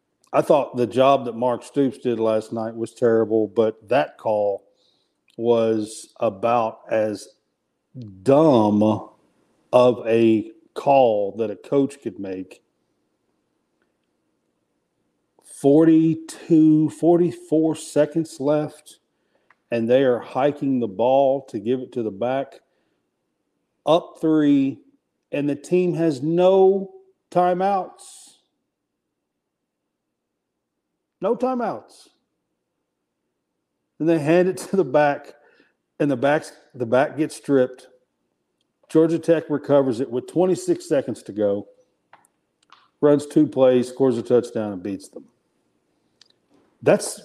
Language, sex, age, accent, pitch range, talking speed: English, male, 50-69, American, 115-160 Hz, 110 wpm